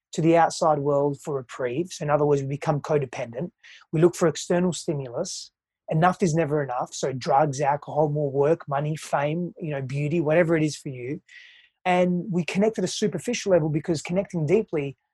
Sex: male